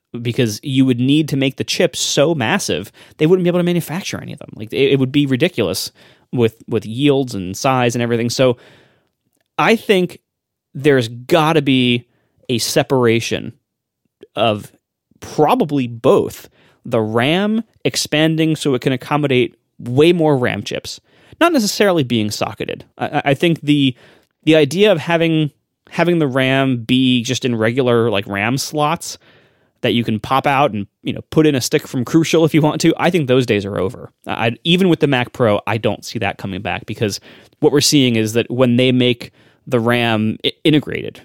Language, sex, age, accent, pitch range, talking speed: English, male, 30-49, American, 110-150 Hz, 180 wpm